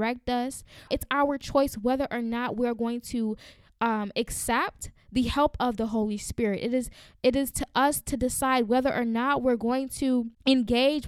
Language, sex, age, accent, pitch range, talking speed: English, female, 10-29, American, 225-260 Hz, 180 wpm